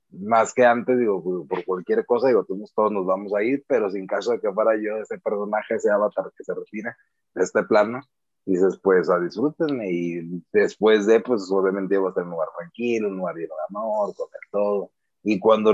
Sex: male